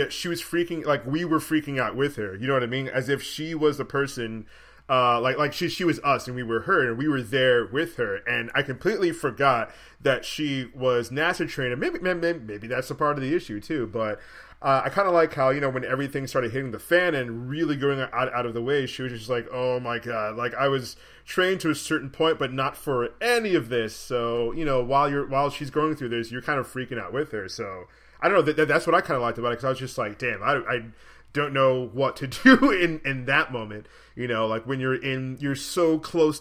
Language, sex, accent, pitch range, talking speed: English, male, American, 120-155 Hz, 255 wpm